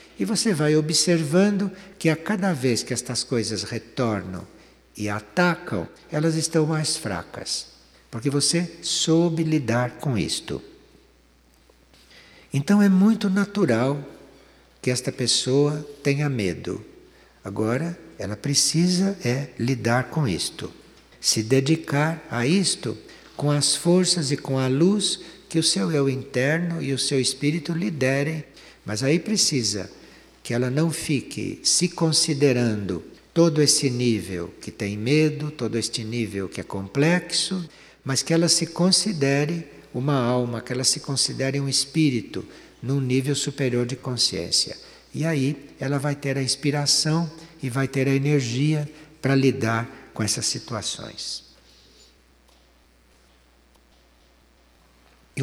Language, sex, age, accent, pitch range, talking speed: Portuguese, male, 60-79, Brazilian, 115-160 Hz, 130 wpm